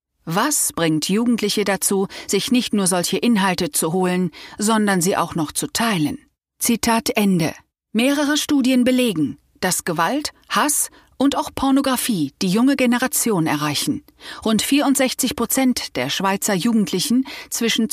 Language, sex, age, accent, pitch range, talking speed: German, female, 40-59, German, 185-245 Hz, 130 wpm